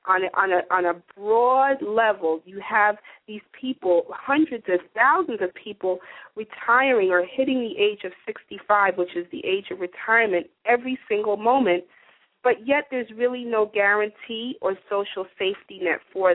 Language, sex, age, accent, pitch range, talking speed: English, female, 40-59, American, 190-255 Hz, 160 wpm